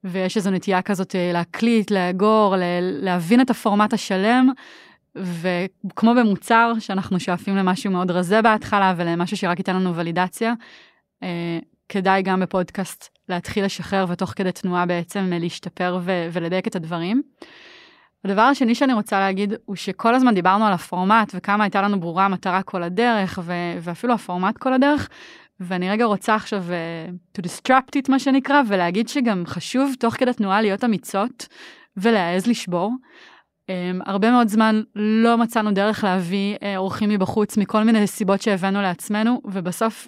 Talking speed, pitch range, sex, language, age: 140 wpm, 185-225 Hz, female, Hebrew, 20-39